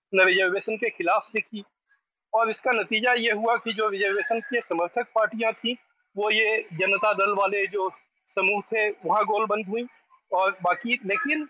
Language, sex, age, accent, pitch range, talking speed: Hindi, male, 40-59, native, 195-265 Hz, 155 wpm